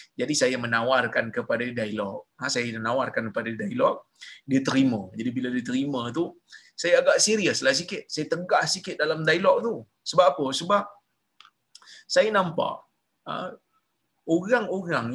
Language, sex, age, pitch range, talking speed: Malayalam, male, 30-49, 155-230 Hz, 125 wpm